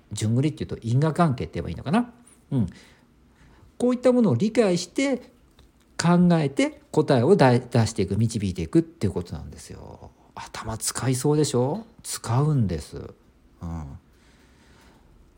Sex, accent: male, native